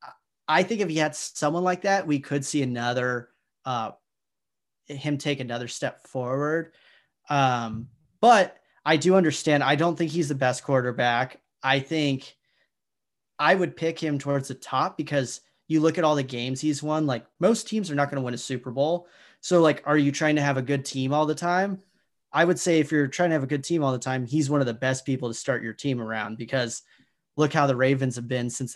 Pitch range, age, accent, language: 130-160 Hz, 30-49, American, English